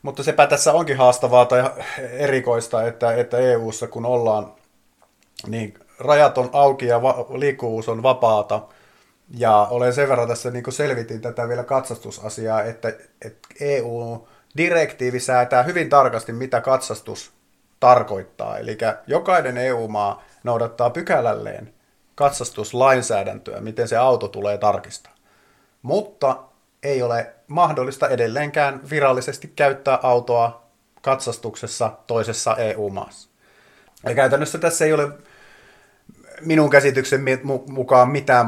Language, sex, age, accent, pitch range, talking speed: Finnish, male, 30-49, native, 115-140 Hz, 110 wpm